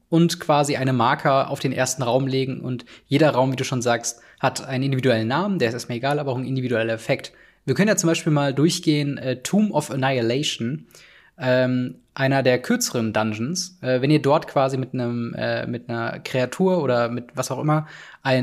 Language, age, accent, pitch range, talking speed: German, 20-39, German, 125-165 Hz, 200 wpm